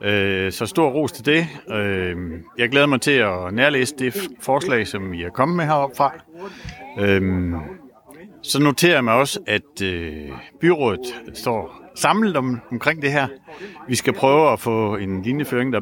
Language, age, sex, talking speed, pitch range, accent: Danish, 60-79, male, 150 wpm, 105-135 Hz, native